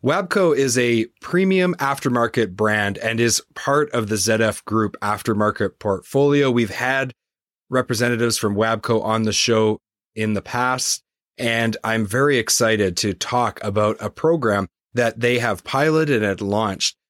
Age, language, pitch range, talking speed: 30-49, English, 105-125 Hz, 145 wpm